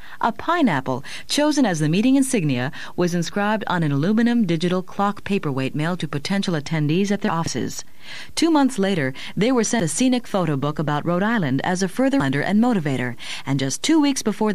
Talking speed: 190 wpm